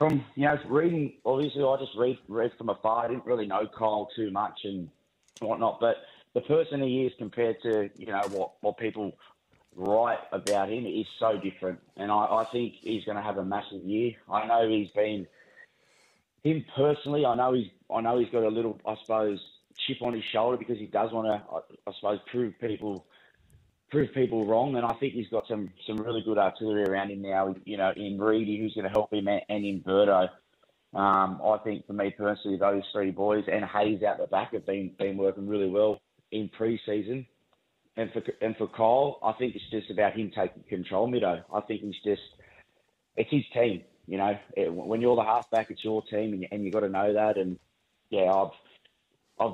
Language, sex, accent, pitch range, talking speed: English, male, Australian, 100-115 Hz, 215 wpm